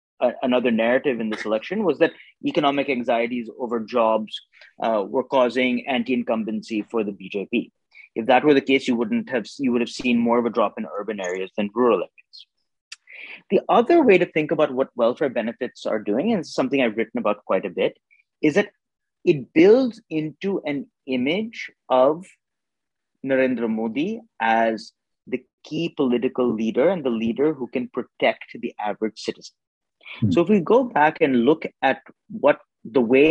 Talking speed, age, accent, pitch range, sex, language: 170 wpm, 30-49, Indian, 115-150 Hz, male, English